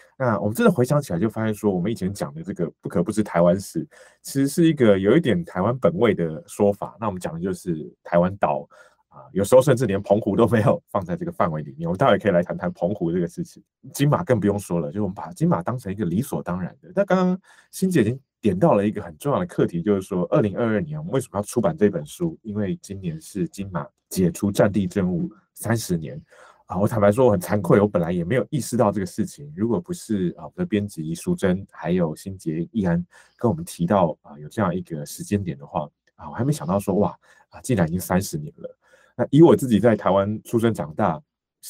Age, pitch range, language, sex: 30-49, 100-165 Hz, Chinese, male